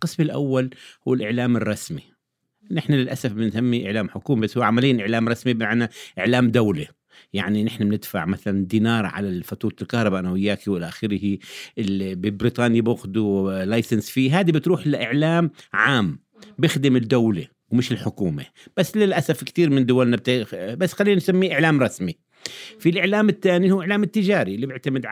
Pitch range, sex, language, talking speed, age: 110-140 Hz, male, Arabic, 145 wpm, 50-69